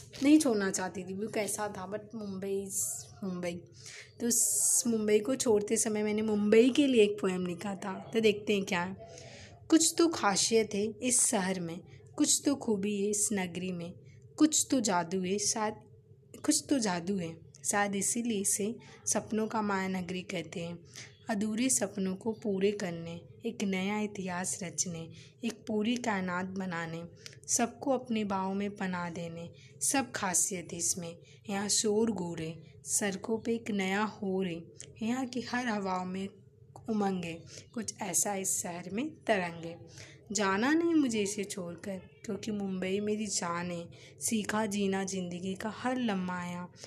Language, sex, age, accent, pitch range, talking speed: Hindi, female, 20-39, native, 175-215 Hz, 150 wpm